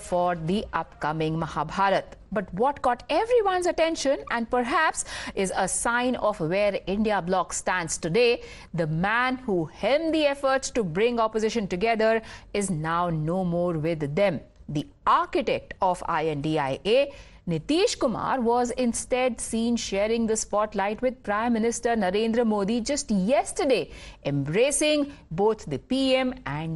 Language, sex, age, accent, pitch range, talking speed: English, female, 50-69, Indian, 180-240 Hz, 135 wpm